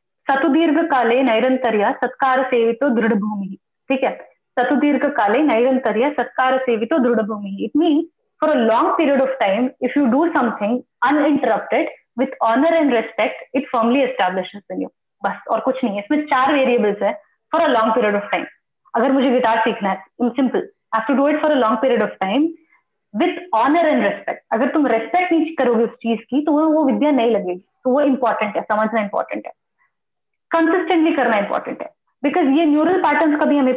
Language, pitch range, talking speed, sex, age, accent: Hindi, 230-310 Hz, 185 wpm, female, 20-39, native